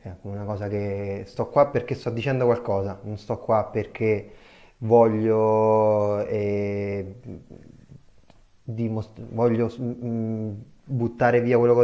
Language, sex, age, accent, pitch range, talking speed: Italian, male, 20-39, native, 110-125 Hz, 115 wpm